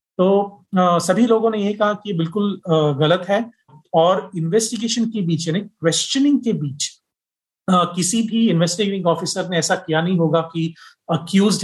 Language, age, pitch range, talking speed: Hindi, 40-59, 155-185 Hz, 145 wpm